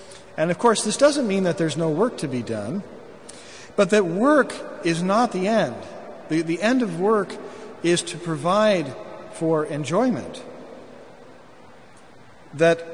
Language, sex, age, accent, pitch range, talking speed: English, male, 50-69, American, 150-200 Hz, 145 wpm